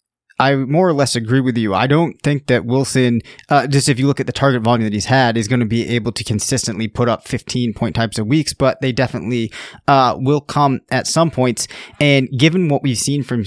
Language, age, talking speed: English, 20-39, 235 wpm